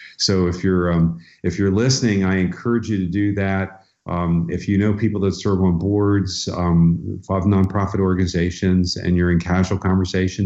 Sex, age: male, 50-69